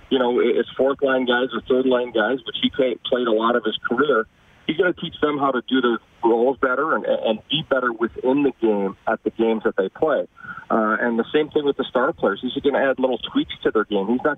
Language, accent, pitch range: English, American, 110-130 Hz